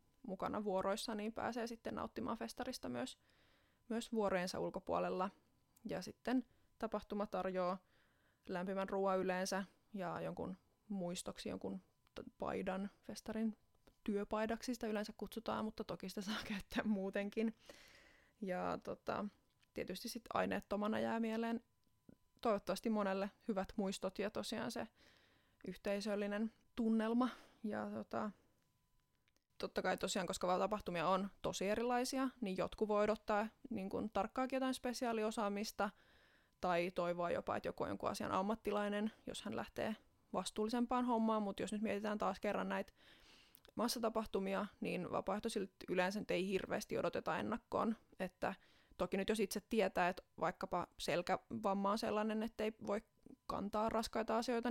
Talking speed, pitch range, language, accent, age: 120 wpm, 195-230 Hz, Finnish, native, 20-39